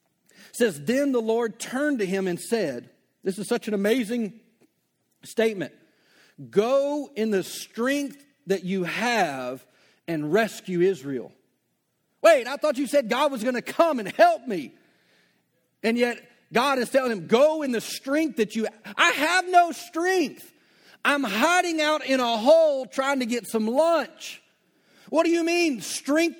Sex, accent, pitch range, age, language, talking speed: male, American, 205-290 Hz, 40-59, English, 160 wpm